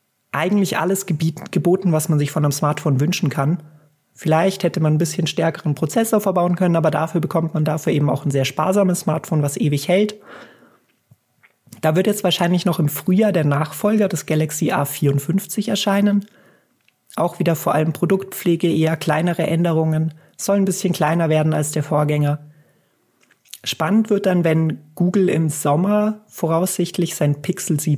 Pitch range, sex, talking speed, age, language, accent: 155-185 Hz, male, 155 wpm, 30-49, German, German